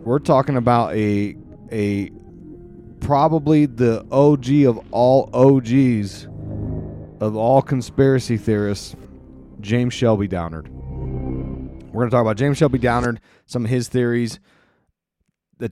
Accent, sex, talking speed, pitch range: American, male, 120 wpm, 105-130 Hz